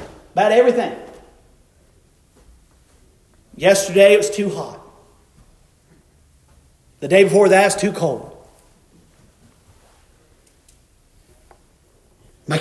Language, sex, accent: English, male, American